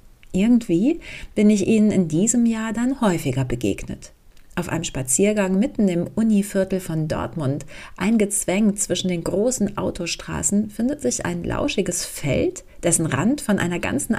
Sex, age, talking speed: female, 40-59, 140 wpm